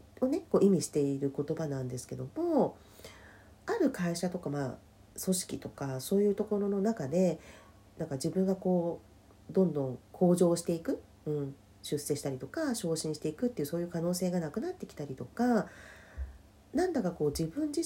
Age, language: 40-59, Japanese